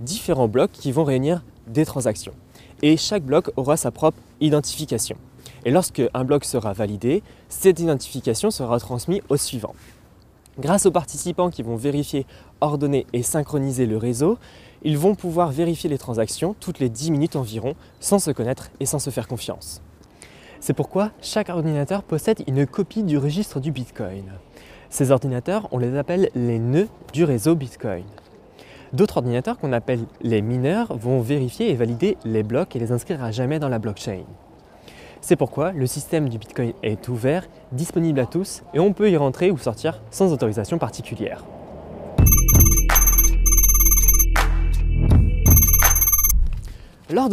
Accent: French